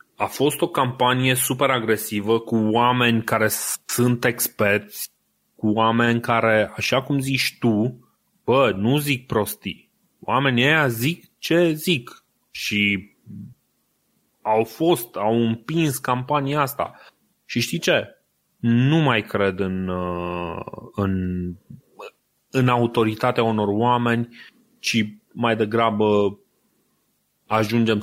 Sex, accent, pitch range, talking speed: male, native, 105-125 Hz, 110 wpm